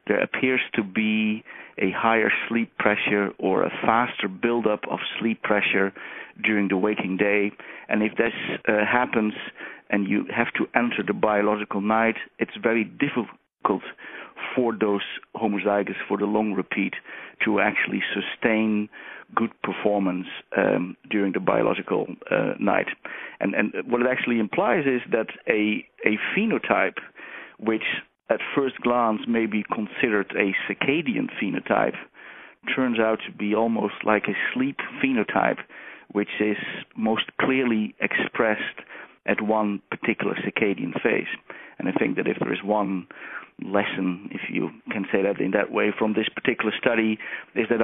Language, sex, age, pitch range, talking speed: English, male, 50-69, 105-115 Hz, 145 wpm